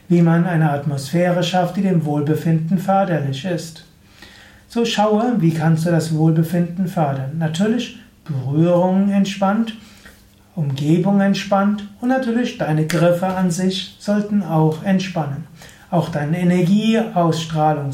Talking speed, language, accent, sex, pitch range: 115 wpm, German, German, male, 155-195 Hz